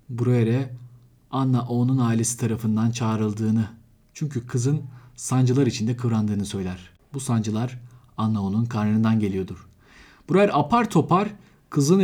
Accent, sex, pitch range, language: native, male, 110-140 Hz, Turkish